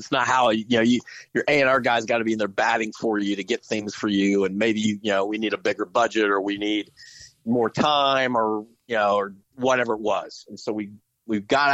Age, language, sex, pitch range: 40-59, English, male, 110-130 Hz